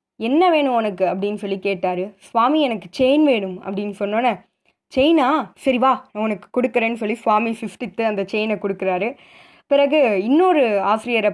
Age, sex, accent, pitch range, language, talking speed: 20-39, female, native, 205-280 Hz, Tamil, 140 wpm